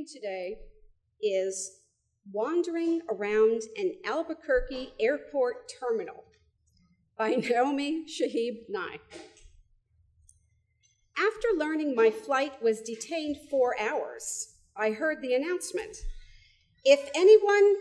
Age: 50-69